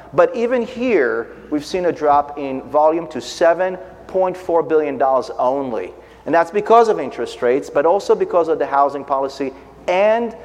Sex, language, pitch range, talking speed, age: male, English, 140-180 Hz, 160 wpm, 40-59